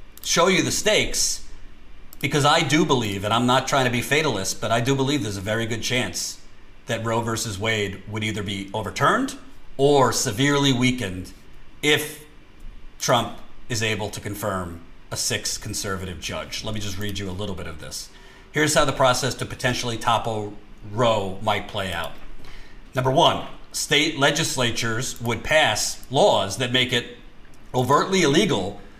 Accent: American